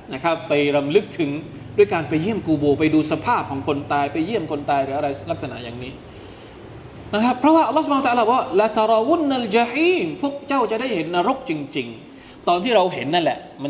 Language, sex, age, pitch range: Thai, male, 20-39, 145-225 Hz